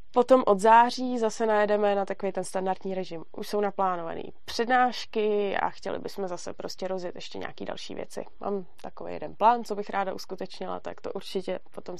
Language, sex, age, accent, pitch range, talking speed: Czech, female, 20-39, native, 185-220 Hz, 180 wpm